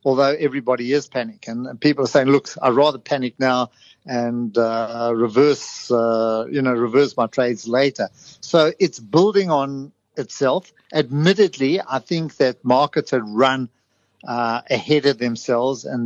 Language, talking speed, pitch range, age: English, 150 wpm, 120-150 Hz, 50-69